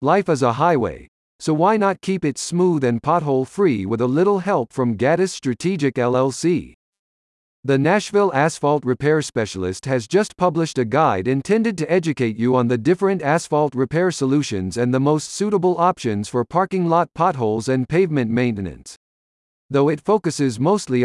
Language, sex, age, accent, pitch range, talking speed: English, male, 50-69, American, 125-175 Hz, 160 wpm